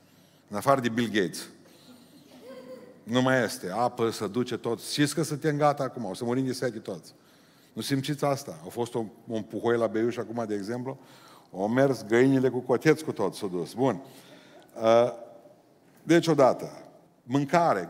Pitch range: 115-145 Hz